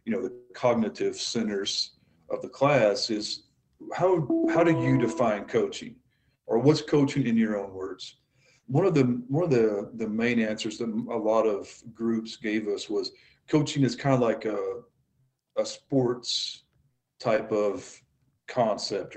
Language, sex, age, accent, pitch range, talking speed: English, male, 40-59, American, 110-135 Hz, 155 wpm